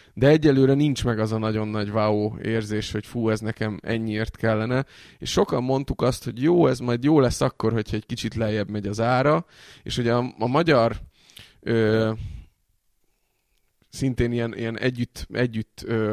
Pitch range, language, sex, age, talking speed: 105-120 Hz, Hungarian, male, 20-39, 165 wpm